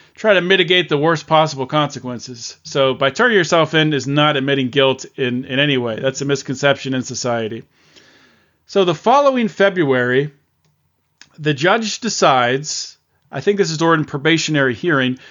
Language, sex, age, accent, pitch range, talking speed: English, male, 40-59, American, 140-185 Hz, 155 wpm